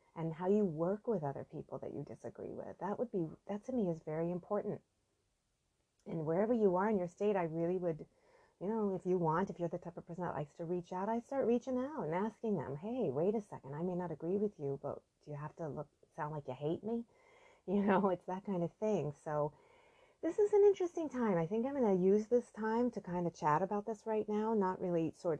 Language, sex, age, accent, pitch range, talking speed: English, female, 30-49, American, 170-225 Hz, 250 wpm